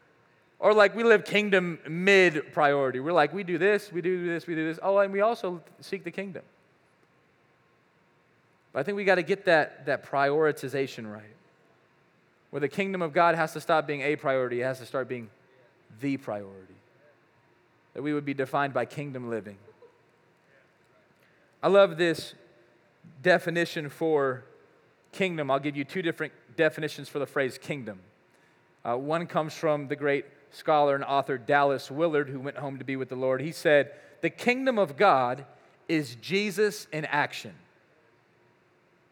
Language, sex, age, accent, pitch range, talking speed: English, male, 20-39, American, 140-200 Hz, 165 wpm